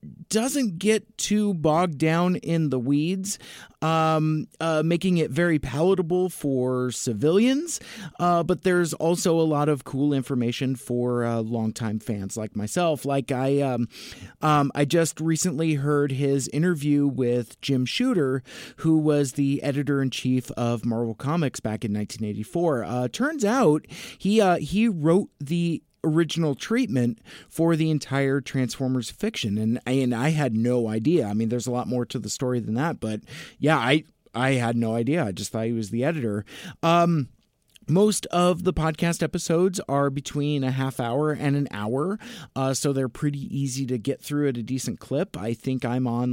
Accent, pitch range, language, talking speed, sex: American, 125-165 Hz, English, 170 wpm, male